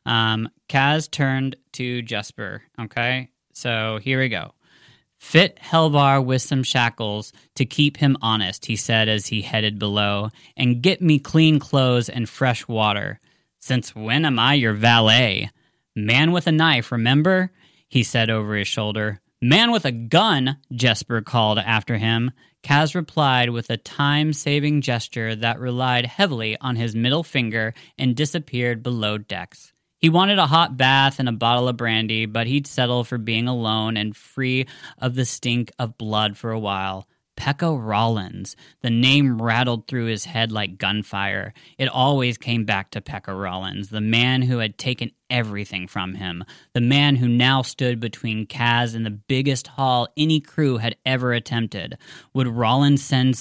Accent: American